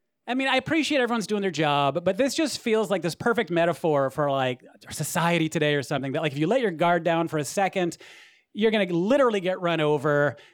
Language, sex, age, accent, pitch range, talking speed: English, male, 30-49, American, 145-215 Hz, 230 wpm